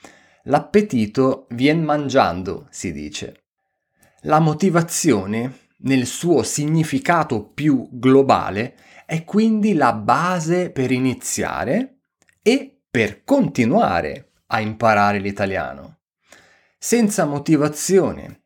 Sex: male